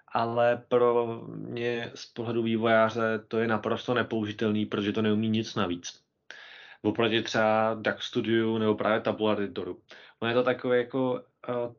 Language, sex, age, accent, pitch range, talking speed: Czech, male, 20-39, native, 115-130 Hz, 150 wpm